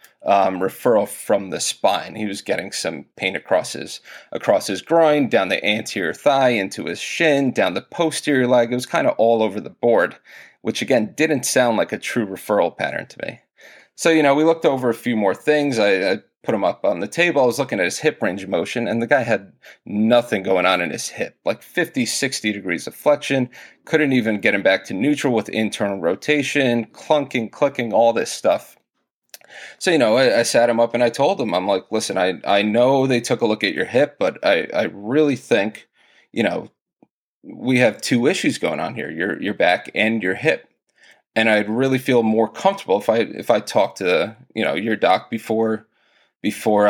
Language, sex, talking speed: English, male, 210 wpm